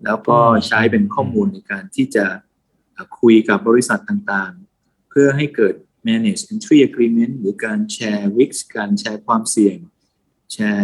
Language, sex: Thai, male